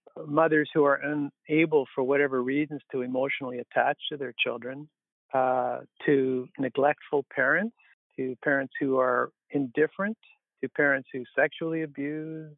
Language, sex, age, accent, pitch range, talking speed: English, male, 50-69, American, 125-150 Hz, 130 wpm